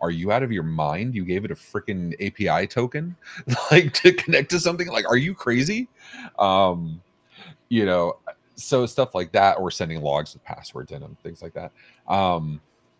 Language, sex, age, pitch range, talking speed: English, male, 30-49, 75-105 Hz, 185 wpm